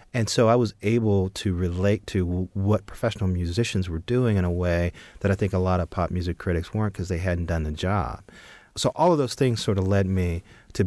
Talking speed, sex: 230 wpm, male